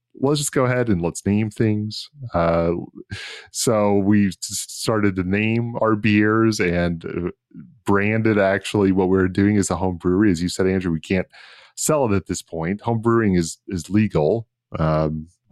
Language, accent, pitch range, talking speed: English, American, 85-115 Hz, 170 wpm